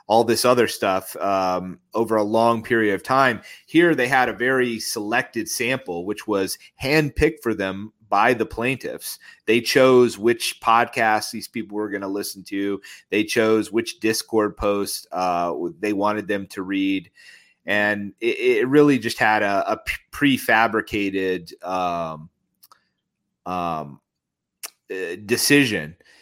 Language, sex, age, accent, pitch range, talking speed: English, male, 30-49, American, 100-125 Hz, 135 wpm